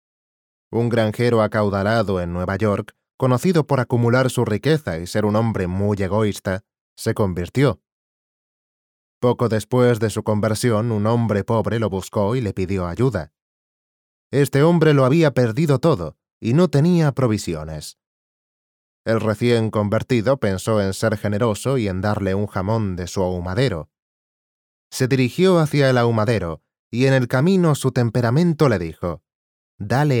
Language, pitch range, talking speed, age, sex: English, 100-130 Hz, 145 wpm, 20-39, male